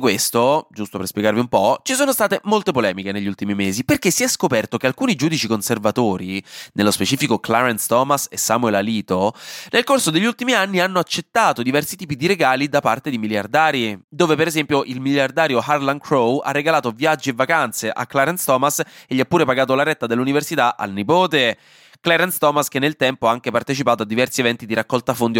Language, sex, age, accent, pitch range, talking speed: Italian, male, 20-39, native, 115-165 Hz, 195 wpm